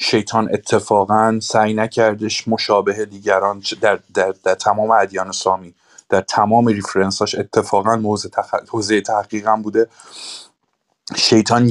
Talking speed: 115 wpm